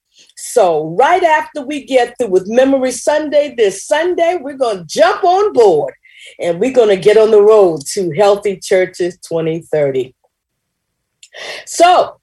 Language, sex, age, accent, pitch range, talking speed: English, female, 40-59, American, 195-310 Hz, 145 wpm